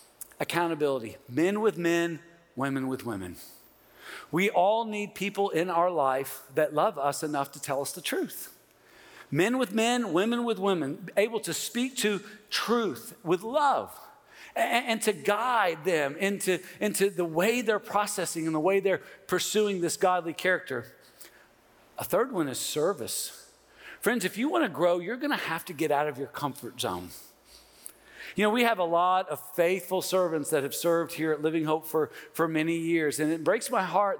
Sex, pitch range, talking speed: male, 160-225 Hz, 180 wpm